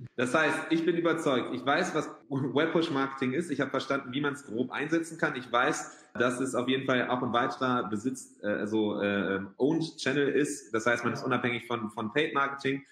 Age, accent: 30-49, German